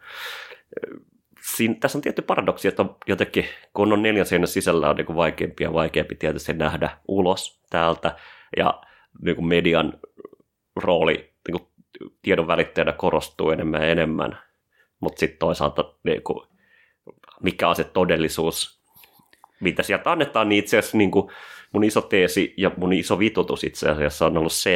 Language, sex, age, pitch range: Finnish, male, 30-49, 85-110 Hz